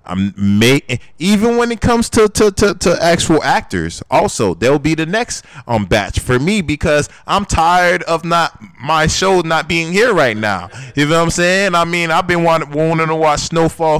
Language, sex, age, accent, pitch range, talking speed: English, male, 20-39, American, 105-155 Hz, 200 wpm